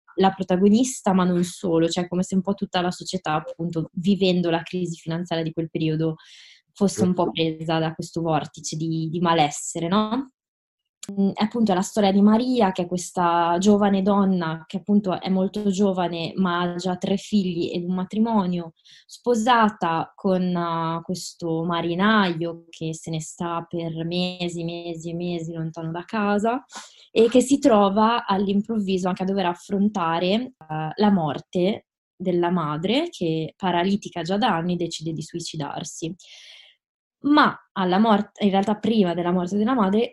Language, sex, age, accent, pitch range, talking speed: Italian, female, 20-39, native, 165-200 Hz, 155 wpm